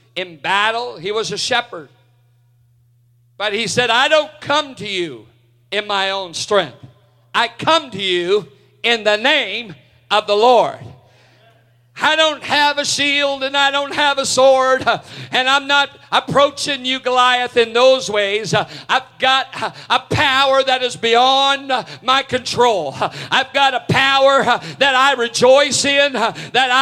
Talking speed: 150 wpm